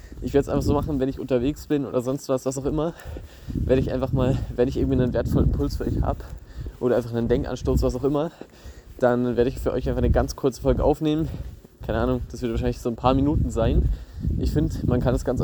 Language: German